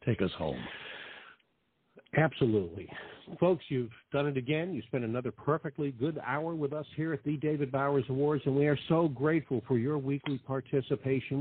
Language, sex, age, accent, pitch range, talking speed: English, male, 50-69, American, 115-155 Hz, 170 wpm